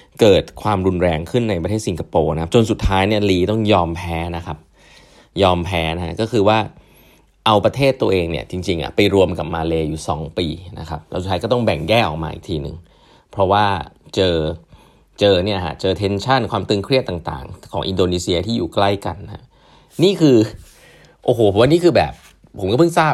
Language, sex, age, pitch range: Thai, male, 20-39, 85-110 Hz